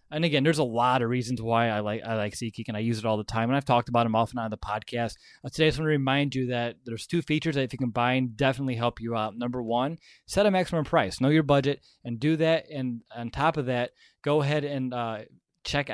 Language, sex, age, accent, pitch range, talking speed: English, male, 20-39, American, 120-145 Hz, 275 wpm